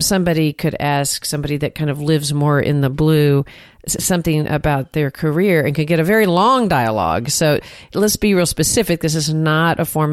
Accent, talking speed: American, 195 wpm